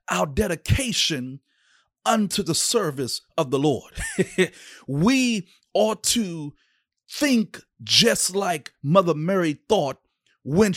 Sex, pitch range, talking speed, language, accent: male, 145-190 Hz, 100 wpm, English, American